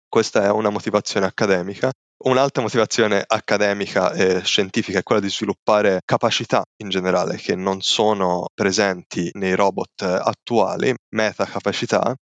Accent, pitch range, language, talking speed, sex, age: native, 95-105 Hz, Italian, 125 wpm, male, 20-39